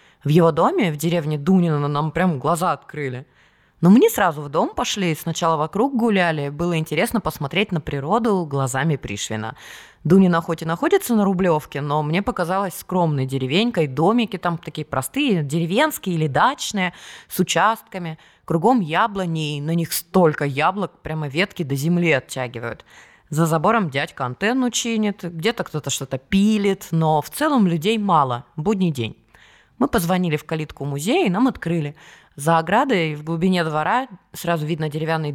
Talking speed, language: 150 wpm, Russian